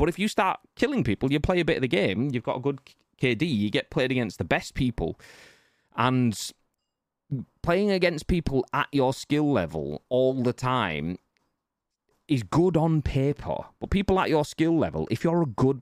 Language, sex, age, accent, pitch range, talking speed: English, male, 30-49, British, 105-150 Hz, 190 wpm